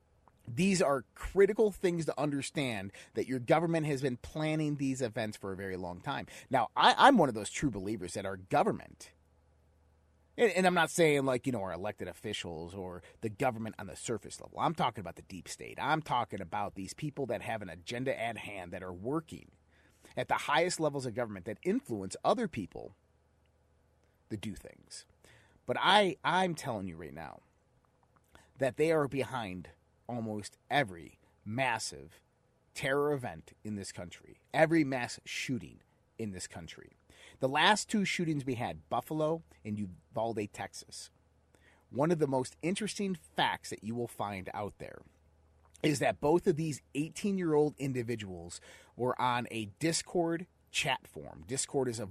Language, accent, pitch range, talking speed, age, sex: English, American, 90-150 Hz, 165 wpm, 30-49, male